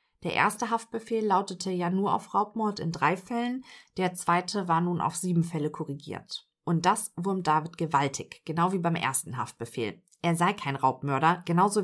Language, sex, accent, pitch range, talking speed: German, female, German, 170-220 Hz, 170 wpm